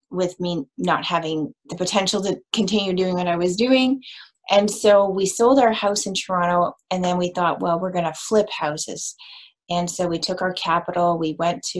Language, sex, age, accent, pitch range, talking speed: English, female, 30-49, American, 175-220 Hz, 205 wpm